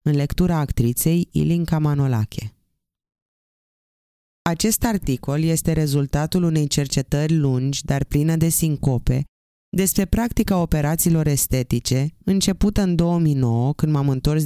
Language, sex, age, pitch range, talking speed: Romanian, female, 20-39, 135-170 Hz, 110 wpm